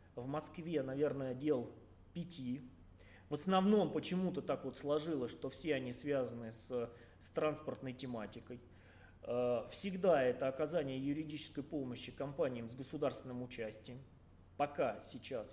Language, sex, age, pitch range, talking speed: Russian, male, 20-39, 110-150 Hz, 115 wpm